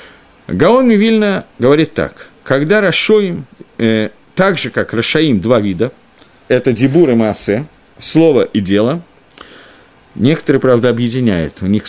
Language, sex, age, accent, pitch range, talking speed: Russian, male, 50-69, native, 110-145 Hz, 125 wpm